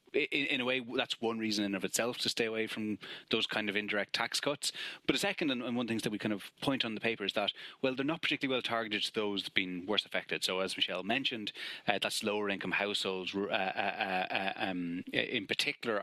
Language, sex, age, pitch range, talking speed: English, male, 30-49, 95-115 Hz, 230 wpm